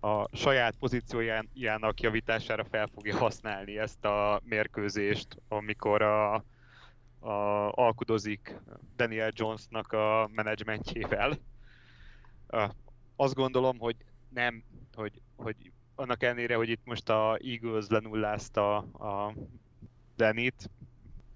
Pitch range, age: 105-120 Hz, 30-49